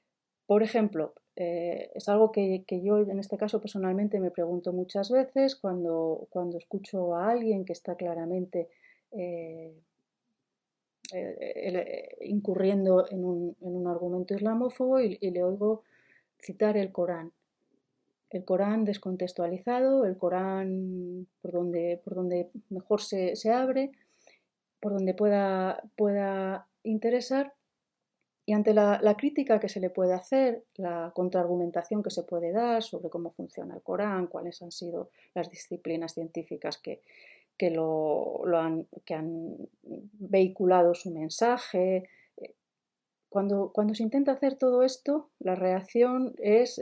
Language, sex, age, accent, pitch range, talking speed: Spanish, female, 30-49, Spanish, 175-220 Hz, 135 wpm